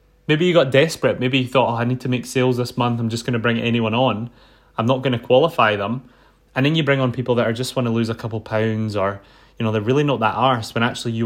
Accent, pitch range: British, 115-145 Hz